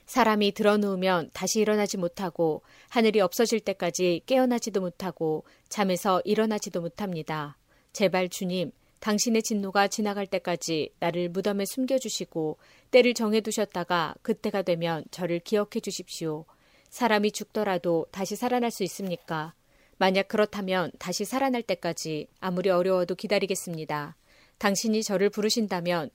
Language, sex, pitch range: Korean, female, 175-220 Hz